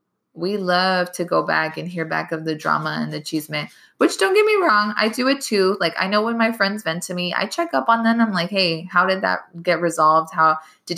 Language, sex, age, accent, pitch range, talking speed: English, female, 20-39, American, 160-215 Hz, 260 wpm